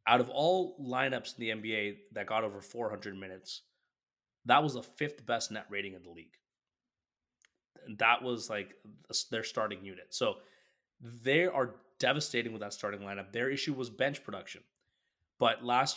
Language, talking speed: English, 160 wpm